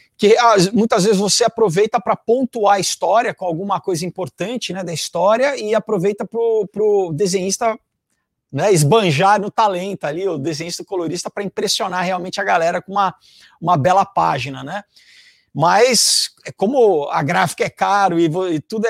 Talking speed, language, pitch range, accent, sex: 160 wpm, Portuguese, 170-220 Hz, Brazilian, male